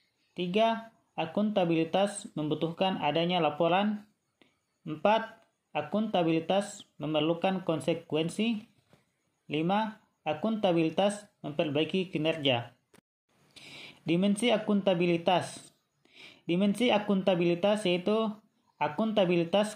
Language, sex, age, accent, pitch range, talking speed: Indonesian, male, 30-49, native, 165-205 Hz, 60 wpm